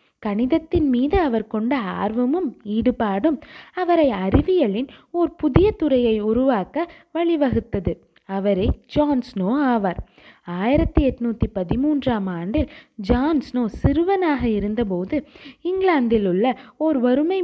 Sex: female